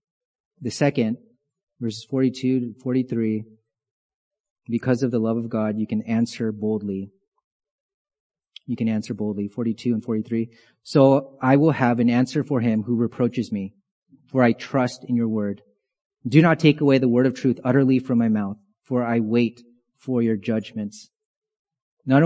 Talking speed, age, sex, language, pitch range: 160 wpm, 30-49, male, English, 120-145 Hz